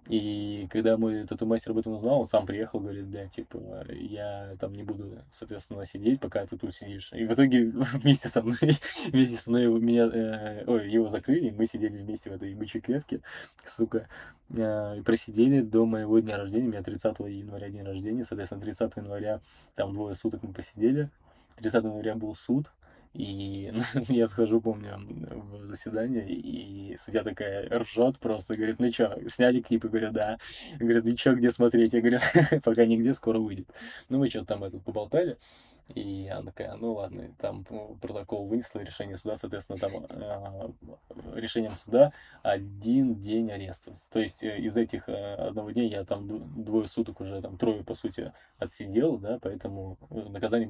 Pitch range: 100-115 Hz